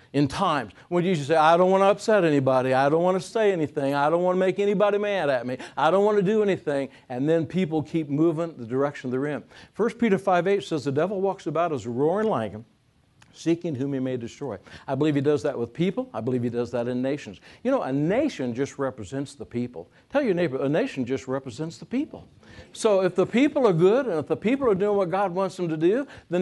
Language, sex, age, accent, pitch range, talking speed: English, male, 60-79, American, 135-195 Hz, 245 wpm